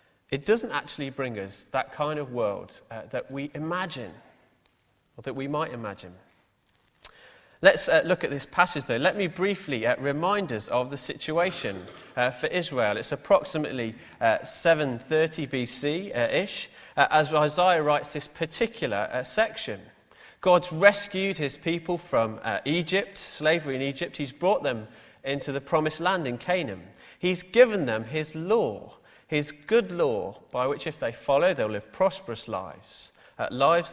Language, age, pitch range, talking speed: English, 30-49, 135-180 Hz, 155 wpm